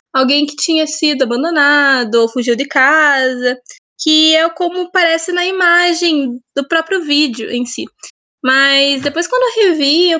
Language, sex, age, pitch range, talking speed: Portuguese, female, 10-29, 265-325 Hz, 155 wpm